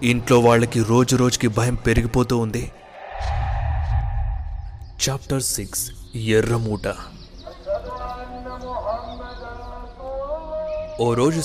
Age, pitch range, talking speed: 30-49, 100-130 Hz, 65 wpm